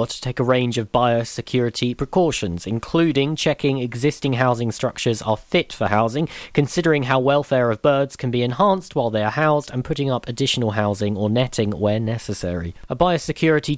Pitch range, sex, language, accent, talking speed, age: 105-135 Hz, male, English, British, 170 wpm, 40-59